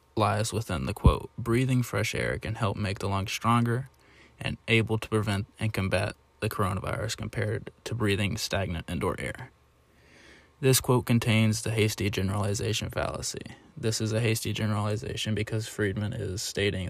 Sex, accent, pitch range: male, American, 100-115 Hz